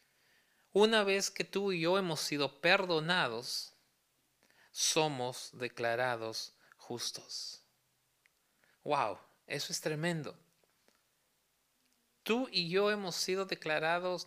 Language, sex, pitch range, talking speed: Spanish, male, 140-190 Hz, 95 wpm